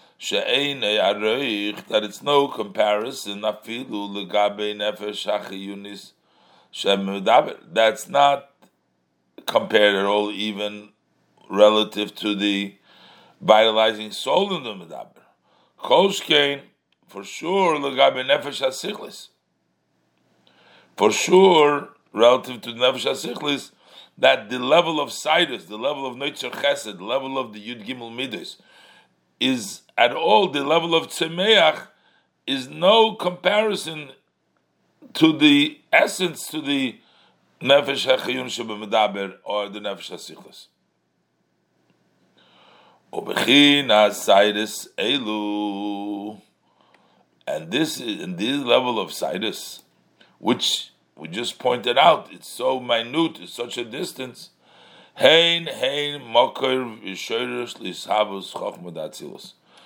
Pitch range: 105-145 Hz